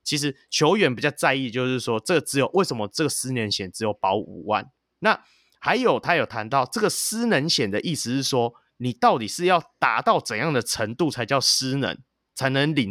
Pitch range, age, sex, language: 115-150 Hz, 30-49, male, Chinese